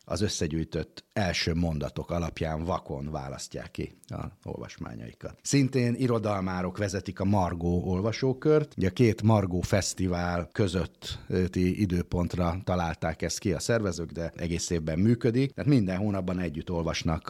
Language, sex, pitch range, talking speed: Hungarian, male, 75-95 Hz, 130 wpm